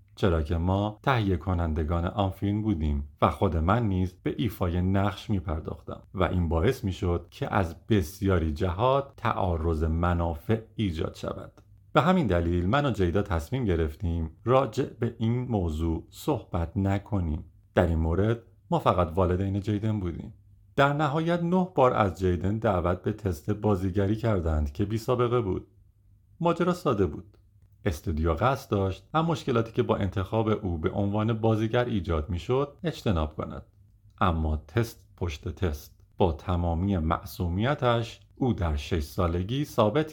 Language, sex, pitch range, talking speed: Persian, male, 90-110 Hz, 145 wpm